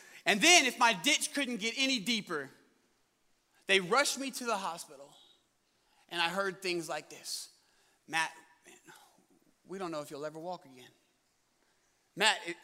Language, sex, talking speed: English, male, 150 wpm